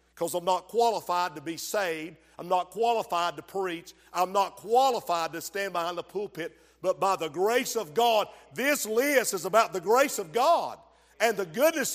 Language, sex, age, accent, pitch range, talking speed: English, male, 50-69, American, 185-260 Hz, 185 wpm